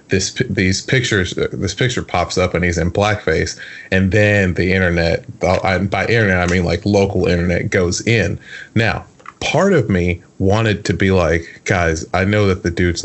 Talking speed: 180 wpm